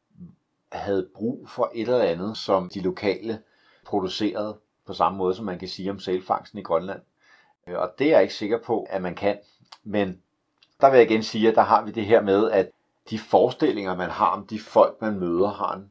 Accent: native